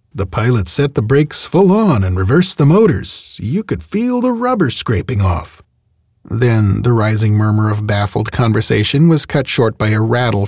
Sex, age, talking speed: male, 40-59, 180 wpm